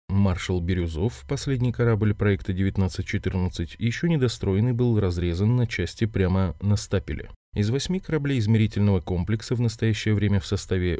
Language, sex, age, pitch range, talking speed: Russian, male, 20-39, 90-115 Hz, 140 wpm